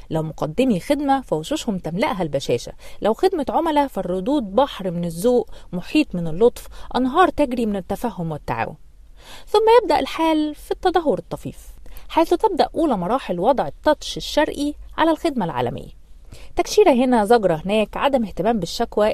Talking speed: 140 wpm